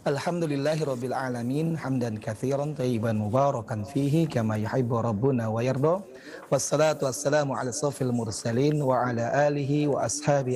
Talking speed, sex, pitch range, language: 130 wpm, male, 115-140 Hz, Indonesian